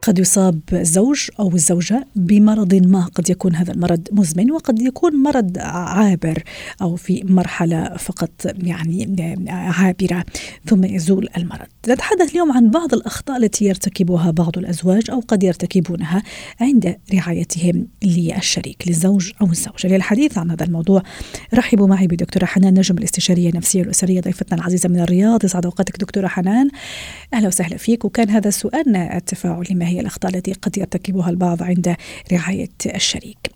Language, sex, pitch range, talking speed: Arabic, female, 180-210 Hz, 140 wpm